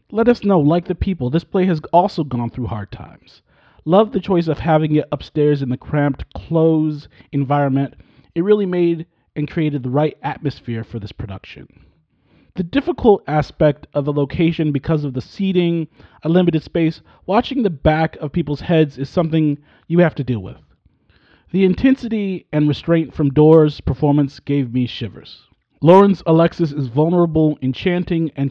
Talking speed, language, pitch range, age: 165 wpm, English, 140-170 Hz, 40-59